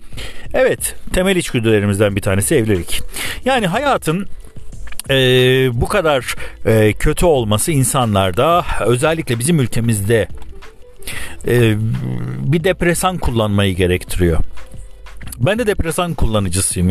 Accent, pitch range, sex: native, 110-140 Hz, male